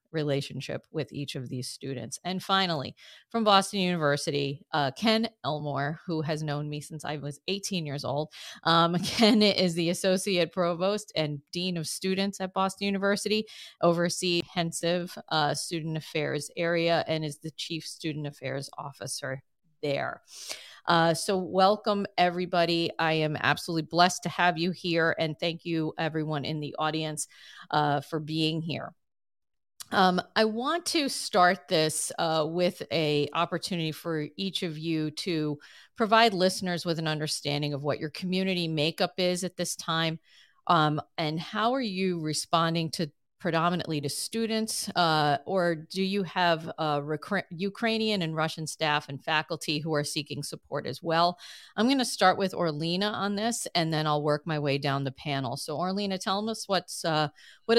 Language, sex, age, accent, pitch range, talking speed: English, female, 40-59, American, 150-185 Hz, 165 wpm